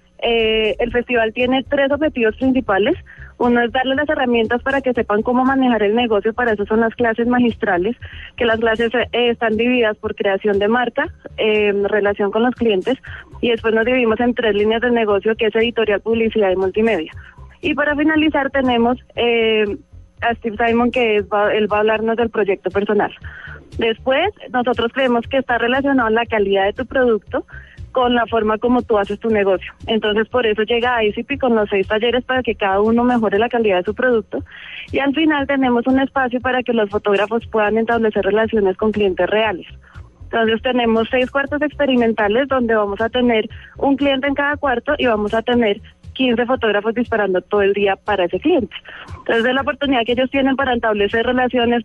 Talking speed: 190 wpm